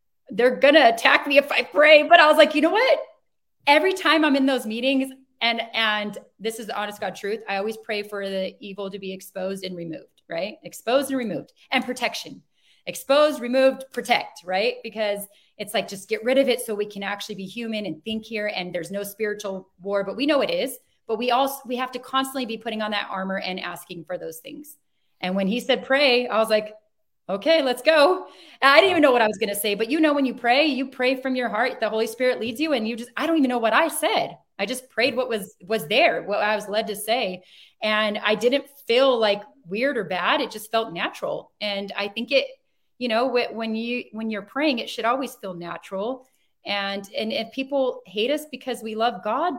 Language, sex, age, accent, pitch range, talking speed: English, female, 30-49, American, 210-265 Hz, 230 wpm